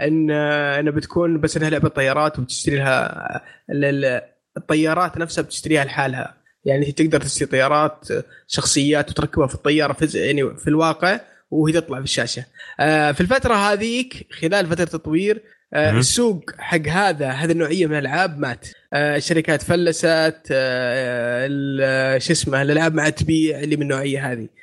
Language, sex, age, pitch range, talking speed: Arabic, male, 20-39, 140-165 Hz, 135 wpm